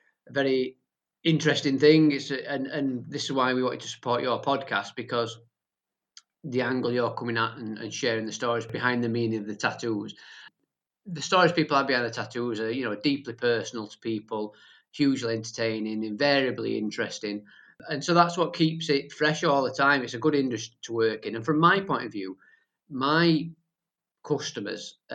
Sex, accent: male, British